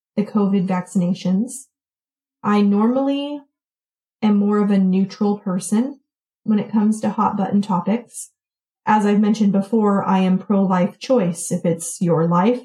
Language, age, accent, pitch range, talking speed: English, 30-49, American, 190-215 Hz, 140 wpm